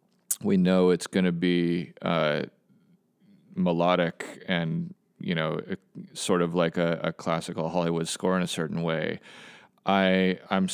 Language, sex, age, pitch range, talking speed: English, male, 30-49, 85-100 Hz, 140 wpm